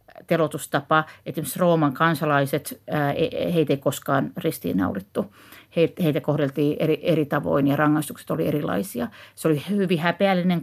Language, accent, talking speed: Finnish, native, 120 wpm